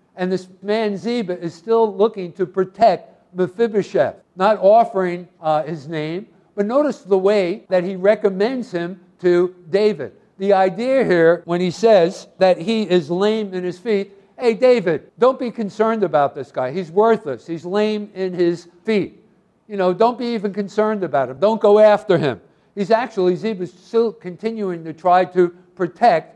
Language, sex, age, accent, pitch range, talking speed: English, male, 60-79, American, 175-215 Hz, 170 wpm